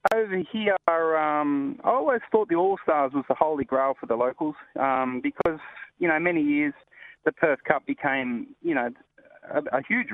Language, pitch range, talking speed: English, 125-165 Hz, 180 wpm